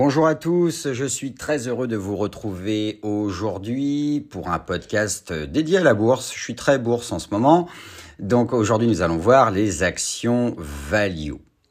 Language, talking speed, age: French, 170 wpm, 50-69